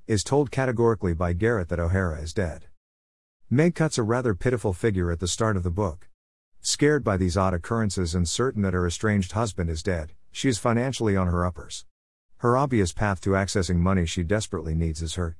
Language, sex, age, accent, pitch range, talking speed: English, male, 50-69, American, 85-110 Hz, 200 wpm